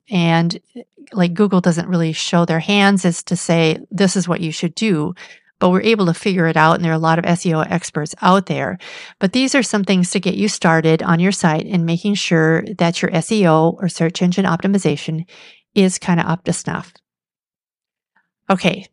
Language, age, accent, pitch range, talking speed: English, 50-69, American, 170-200 Hz, 200 wpm